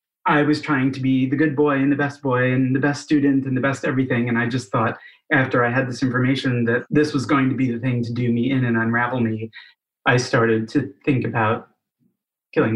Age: 30-49